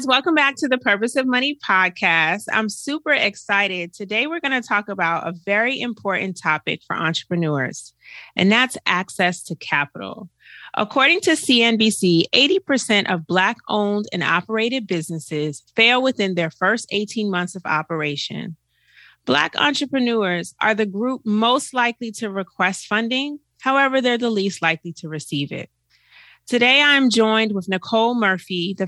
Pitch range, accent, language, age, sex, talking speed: 175-235 Hz, American, English, 30-49, female, 145 wpm